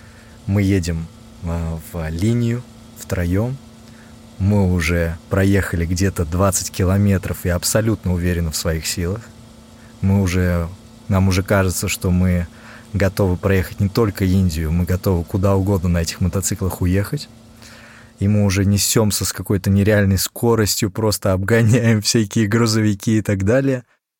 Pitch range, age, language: 90-110 Hz, 20-39, Russian